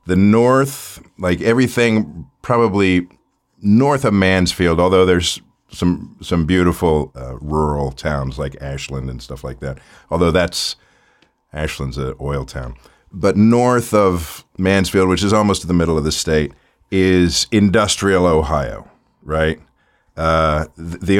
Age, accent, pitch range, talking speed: 50-69, American, 75-100 Hz, 135 wpm